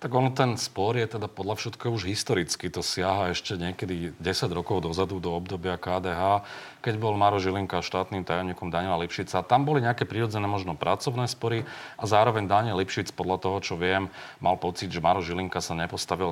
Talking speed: 180 wpm